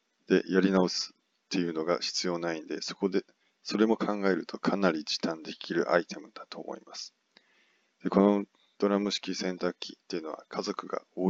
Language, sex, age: Japanese, male, 20-39